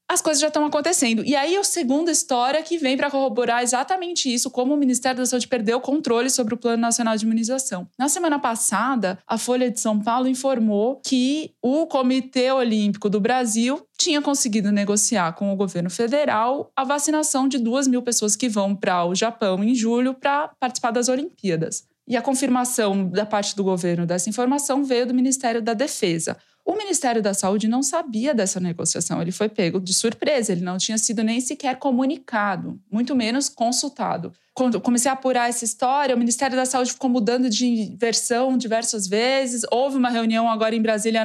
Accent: Brazilian